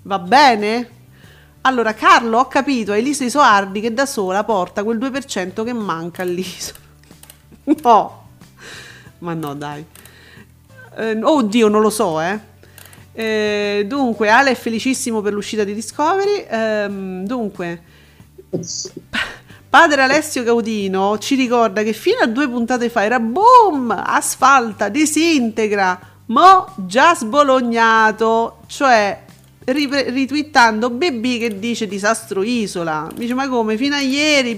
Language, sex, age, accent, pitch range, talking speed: Italian, female, 40-59, native, 210-275 Hz, 125 wpm